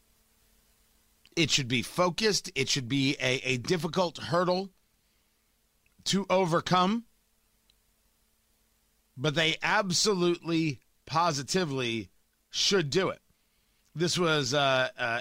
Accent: American